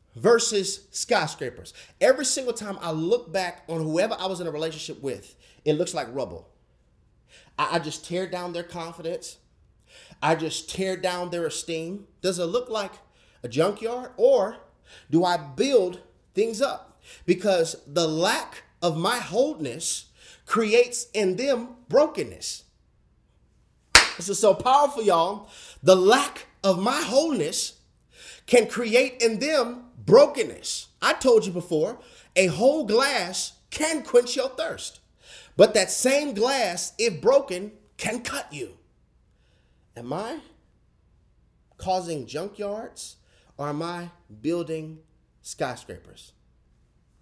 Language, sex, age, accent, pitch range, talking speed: English, male, 30-49, American, 165-240 Hz, 125 wpm